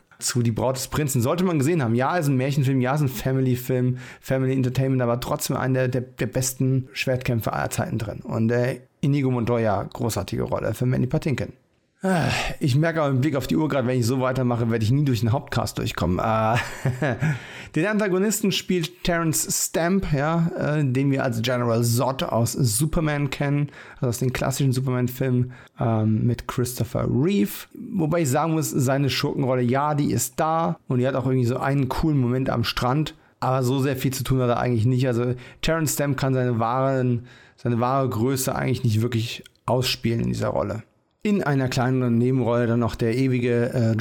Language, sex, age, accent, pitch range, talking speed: German, male, 40-59, German, 120-140 Hz, 190 wpm